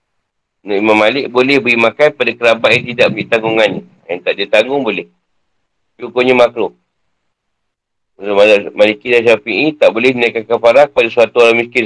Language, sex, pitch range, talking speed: Malay, male, 110-145 Hz, 155 wpm